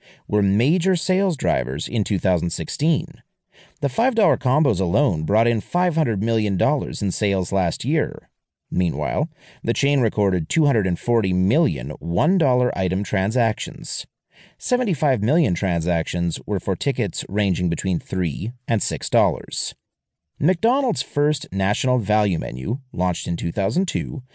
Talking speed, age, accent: 115 wpm, 30-49, American